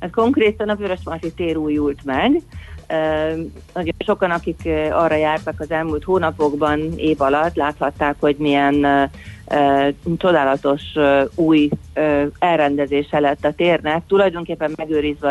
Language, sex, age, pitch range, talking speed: Hungarian, female, 40-59, 145-165 Hz, 125 wpm